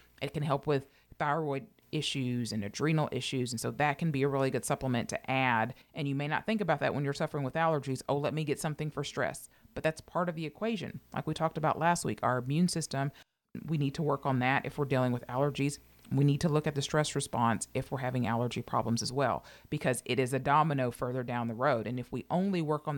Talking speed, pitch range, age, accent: 250 wpm, 130-155 Hz, 40-59, American